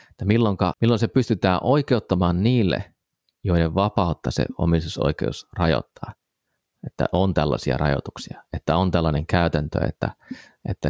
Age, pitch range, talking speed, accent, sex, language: 30-49, 75-100 Hz, 115 wpm, native, male, Finnish